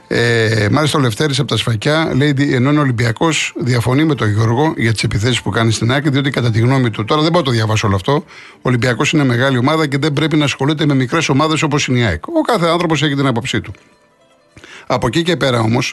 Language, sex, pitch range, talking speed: Greek, male, 110-155 Hz, 240 wpm